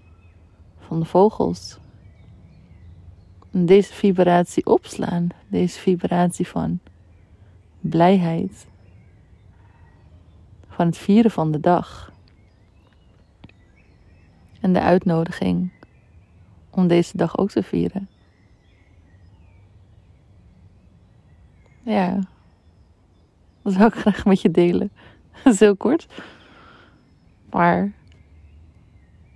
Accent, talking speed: Dutch, 75 wpm